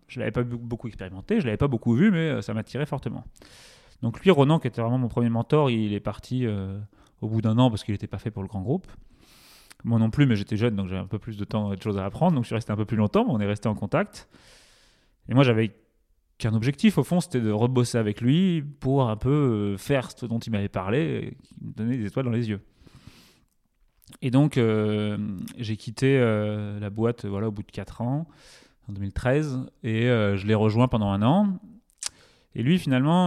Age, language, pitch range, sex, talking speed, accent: 30-49, French, 105-135 Hz, male, 235 wpm, French